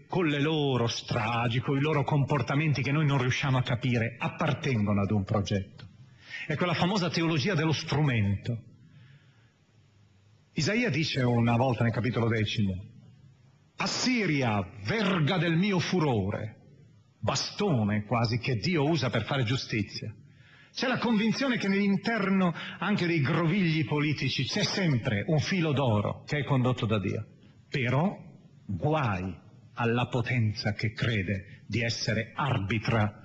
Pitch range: 115-170 Hz